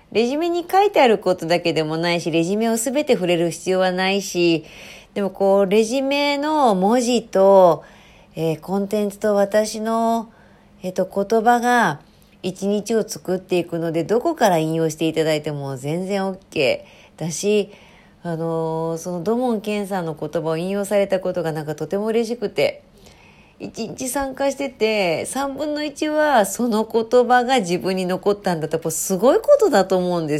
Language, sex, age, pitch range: Japanese, female, 40-59, 170-225 Hz